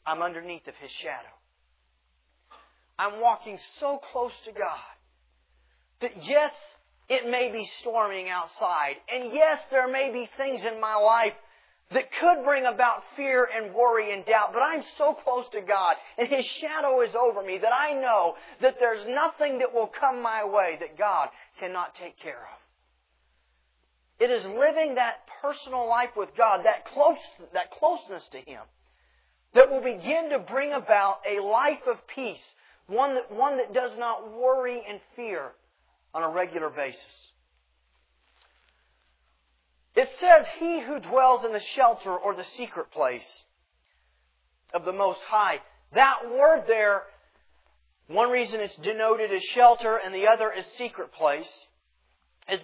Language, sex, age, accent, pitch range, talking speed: English, male, 40-59, American, 165-260 Hz, 150 wpm